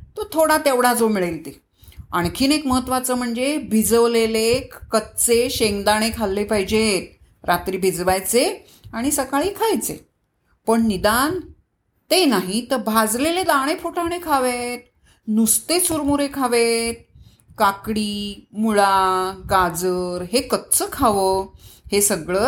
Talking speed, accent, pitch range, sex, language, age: 105 wpm, native, 190-275 Hz, female, Marathi, 30-49